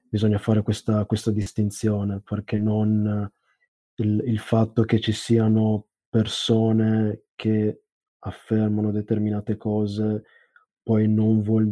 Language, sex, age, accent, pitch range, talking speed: Italian, male, 20-39, native, 105-110 Hz, 100 wpm